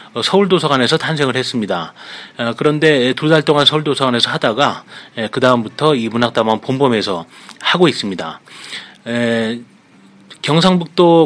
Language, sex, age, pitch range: Korean, male, 30-49, 120-160 Hz